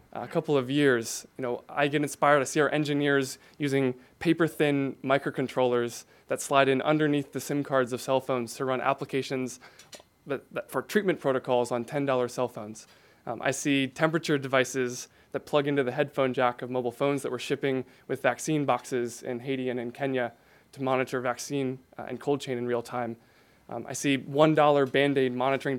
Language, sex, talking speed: English, male, 185 wpm